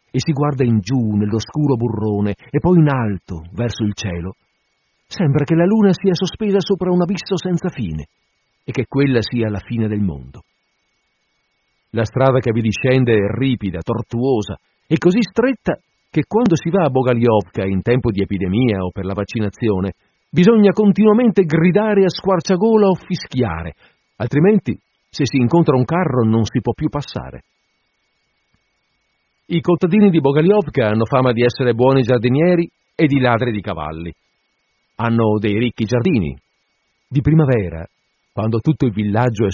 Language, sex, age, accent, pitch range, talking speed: Italian, male, 50-69, native, 105-160 Hz, 155 wpm